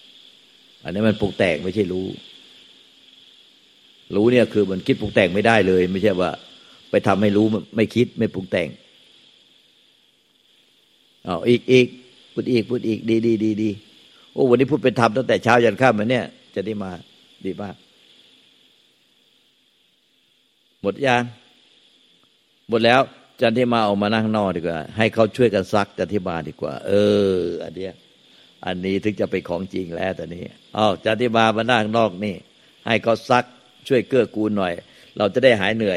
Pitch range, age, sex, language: 95-115 Hz, 60-79, male, Thai